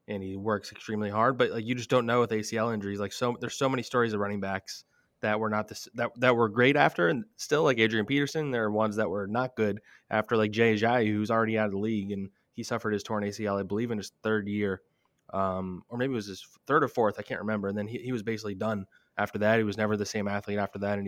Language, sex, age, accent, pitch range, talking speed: English, male, 20-39, American, 105-120 Hz, 275 wpm